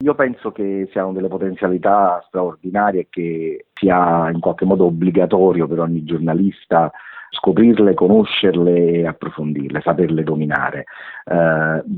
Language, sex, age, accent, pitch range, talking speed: Italian, male, 40-59, native, 85-110 Hz, 120 wpm